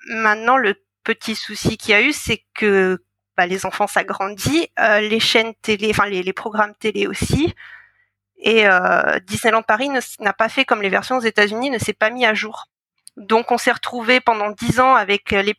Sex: female